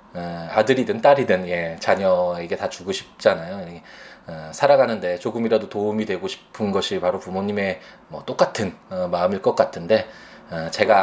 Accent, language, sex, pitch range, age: native, Korean, male, 90-110 Hz, 20-39